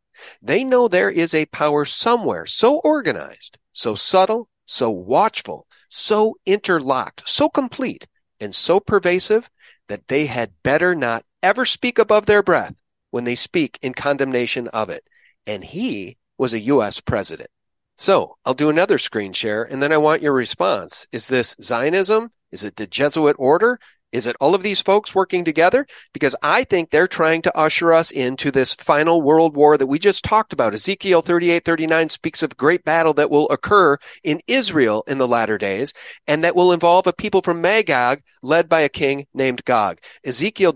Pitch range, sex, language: 140-205 Hz, male, English